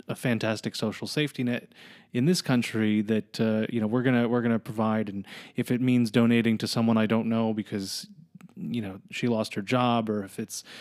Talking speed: 205 wpm